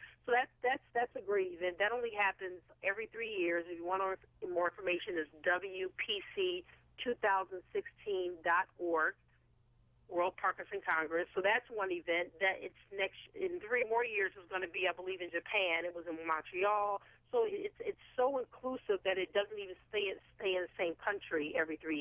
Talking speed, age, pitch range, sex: 170 wpm, 40-59, 175-245 Hz, female